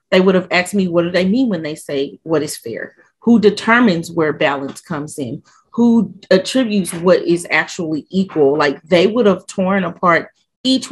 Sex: female